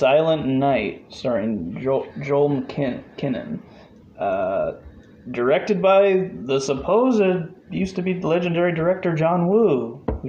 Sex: male